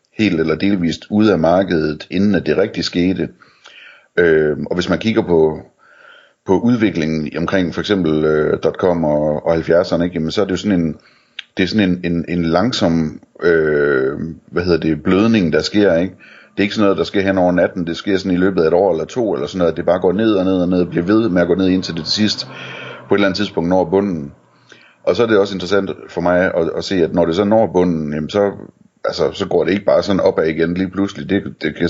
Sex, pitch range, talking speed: male, 80-95 Hz, 220 wpm